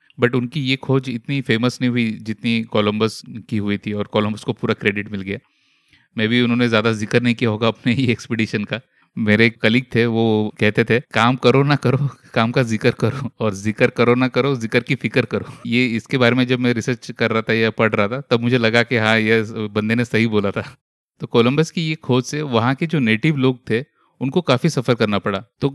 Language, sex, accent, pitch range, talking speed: Hindi, male, native, 110-130 Hz, 230 wpm